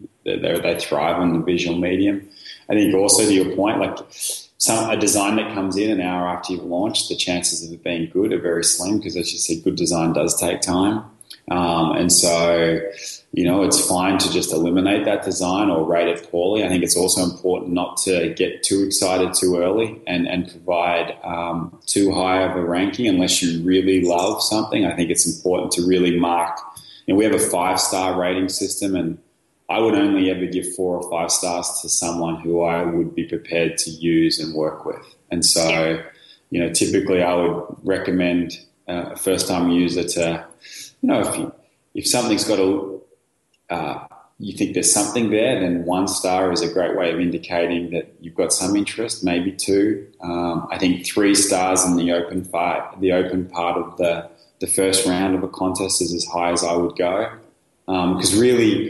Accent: Australian